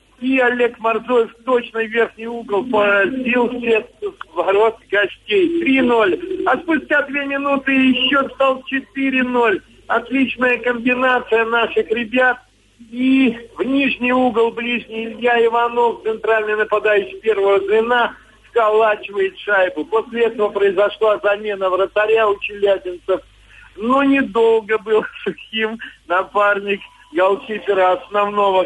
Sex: male